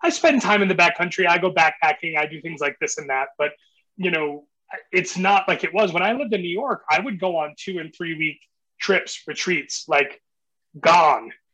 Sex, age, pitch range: male, 30-49, 155-190 Hz